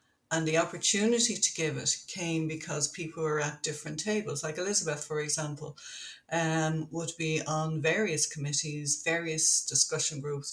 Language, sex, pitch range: English, female, 150-170 Hz